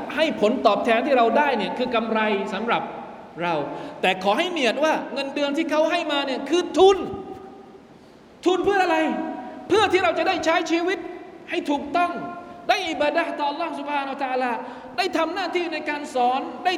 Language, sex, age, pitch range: Thai, male, 20-39, 220-320 Hz